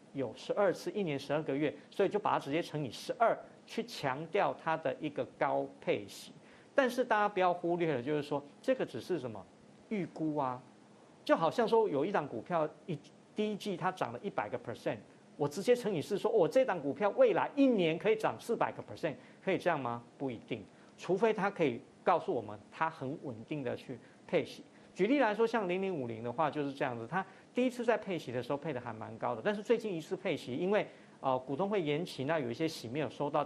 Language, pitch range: Chinese, 150-210 Hz